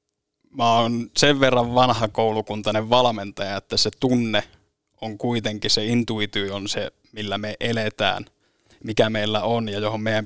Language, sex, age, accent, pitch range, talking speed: Finnish, male, 20-39, native, 105-115 Hz, 145 wpm